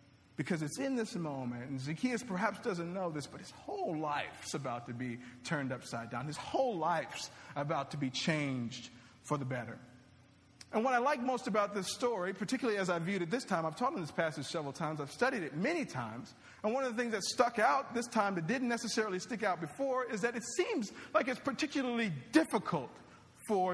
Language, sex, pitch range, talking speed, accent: English, male, 160-240 Hz, 210 wpm, American